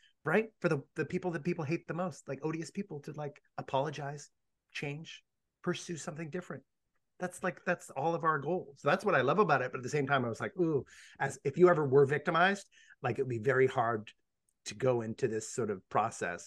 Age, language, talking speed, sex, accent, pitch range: 30-49, English, 220 wpm, male, American, 115-165 Hz